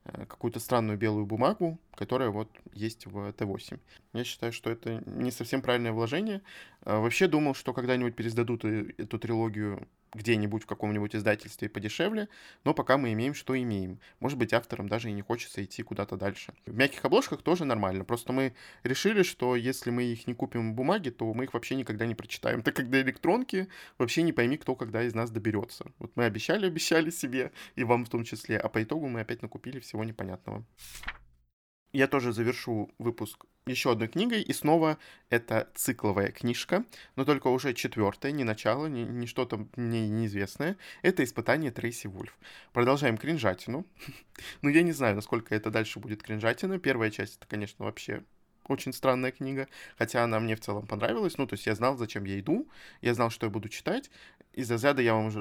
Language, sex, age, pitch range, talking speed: Russian, male, 20-39, 110-135 Hz, 180 wpm